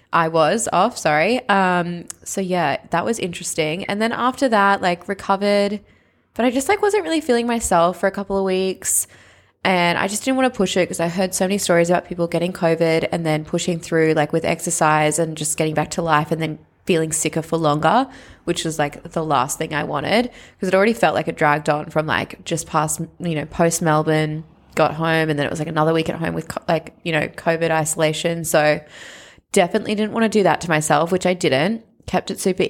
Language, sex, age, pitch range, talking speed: English, female, 20-39, 160-205 Hz, 220 wpm